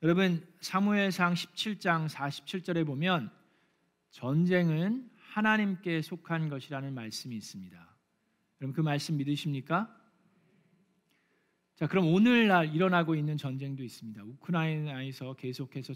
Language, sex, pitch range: Korean, male, 135-175 Hz